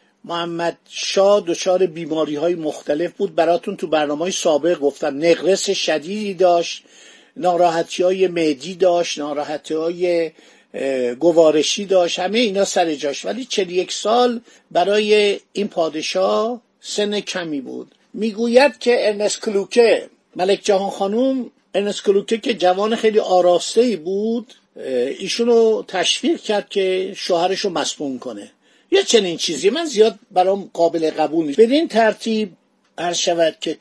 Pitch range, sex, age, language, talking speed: 170-220 Hz, male, 50-69, Persian, 125 wpm